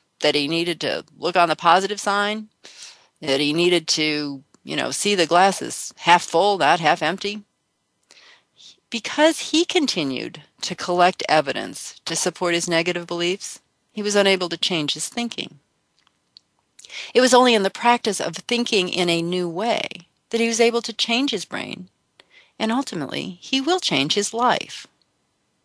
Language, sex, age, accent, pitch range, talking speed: English, female, 40-59, American, 170-235 Hz, 160 wpm